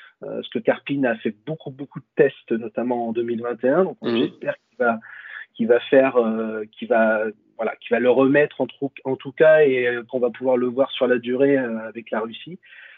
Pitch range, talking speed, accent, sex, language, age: 120-160 Hz, 185 wpm, French, male, French, 30-49